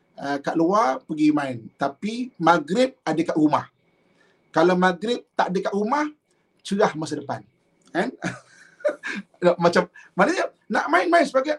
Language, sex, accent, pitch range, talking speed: English, male, Indonesian, 190-270 Hz, 125 wpm